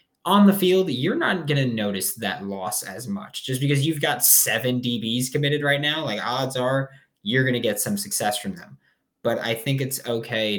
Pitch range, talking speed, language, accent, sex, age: 100-135 Hz, 210 wpm, English, American, male, 20-39